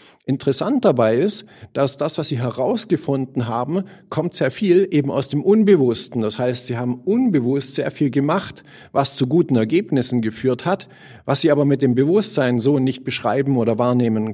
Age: 50-69